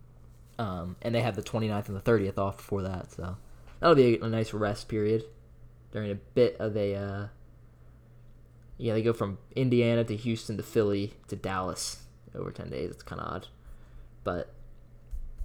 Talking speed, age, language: 175 wpm, 10-29, English